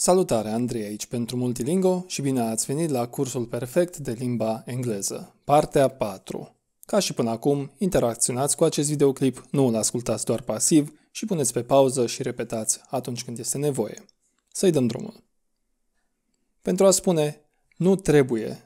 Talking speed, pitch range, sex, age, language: 155 wpm, 120-175 Hz, male, 20-39, Romanian